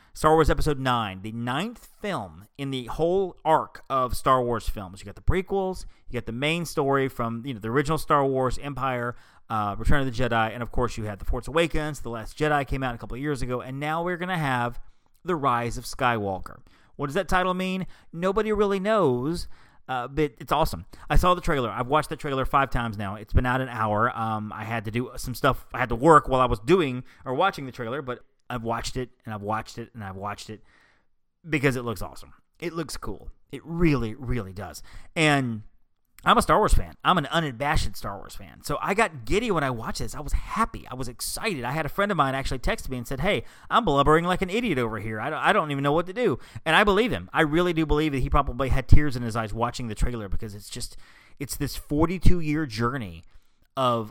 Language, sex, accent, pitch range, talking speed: English, male, American, 115-155 Hz, 235 wpm